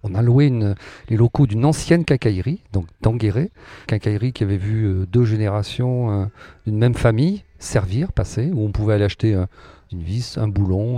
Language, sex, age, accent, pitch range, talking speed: French, male, 40-59, French, 105-130 Hz, 165 wpm